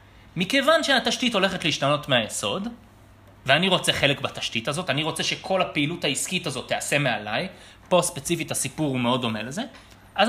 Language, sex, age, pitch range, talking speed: English, male, 30-49, 125-185 Hz, 135 wpm